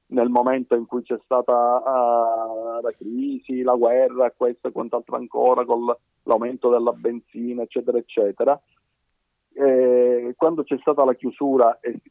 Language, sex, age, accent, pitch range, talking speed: Italian, male, 40-59, native, 115-145 Hz, 130 wpm